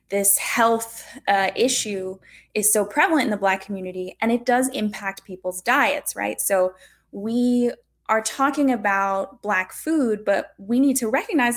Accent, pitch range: American, 190-245 Hz